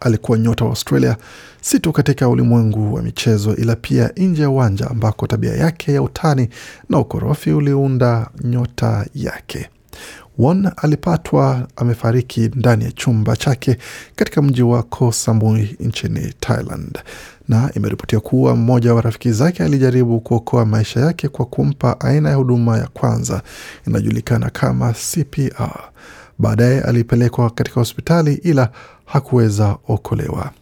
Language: Swahili